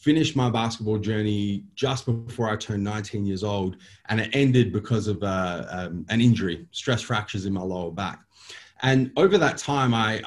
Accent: Australian